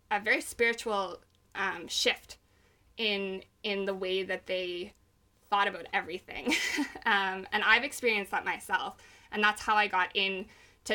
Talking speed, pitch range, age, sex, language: 145 wpm, 190-225 Hz, 20-39, female, English